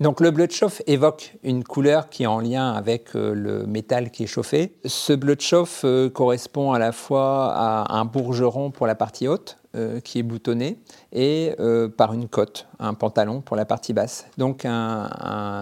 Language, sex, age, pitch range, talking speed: French, male, 50-69, 115-145 Hz, 205 wpm